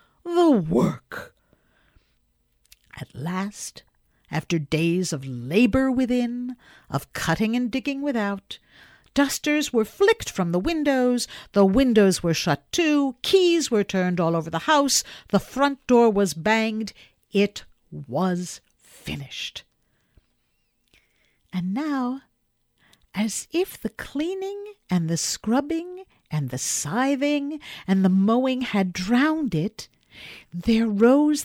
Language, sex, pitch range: English, female, 160-255 Hz